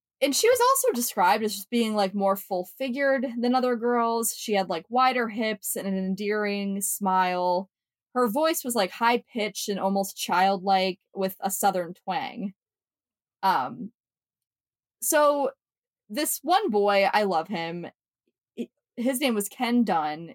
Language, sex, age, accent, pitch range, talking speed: English, female, 20-39, American, 190-245 Hz, 145 wpm